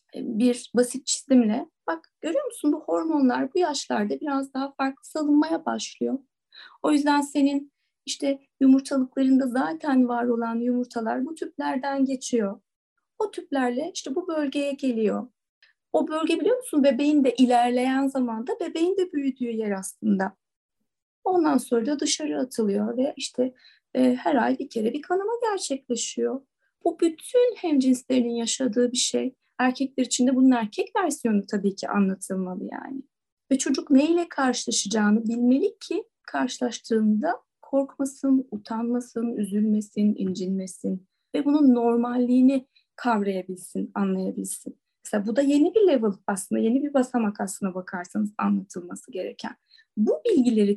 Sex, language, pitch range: female, Turkish, 225-285 Hz